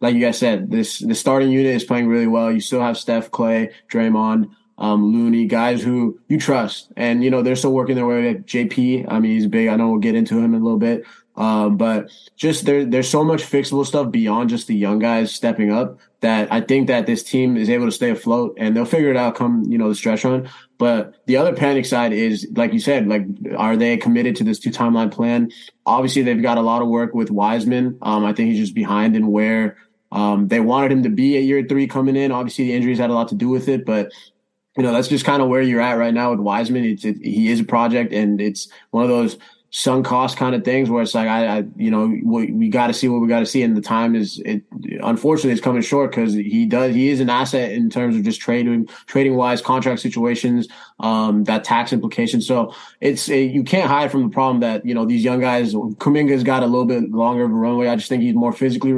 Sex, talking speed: male, 250 wpm